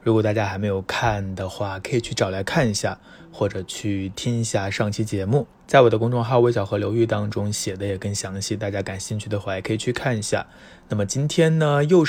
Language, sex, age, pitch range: Chinese, male, 20-39, 95-120 Hz